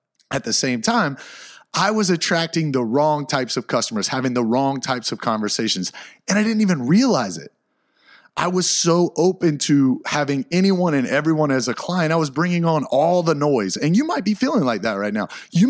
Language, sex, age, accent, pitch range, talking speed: English, male, 30-49, American, 130-175 Hz, 205 wpm